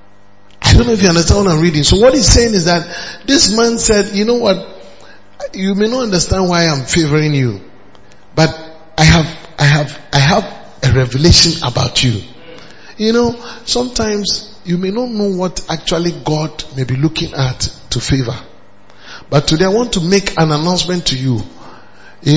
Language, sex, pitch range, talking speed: English, male, 125-190 Hz, 180 wpm